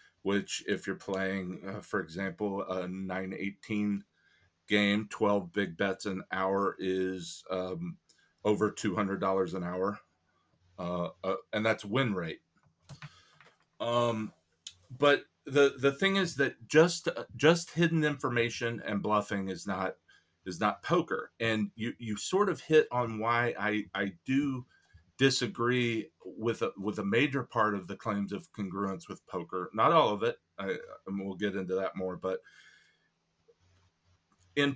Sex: male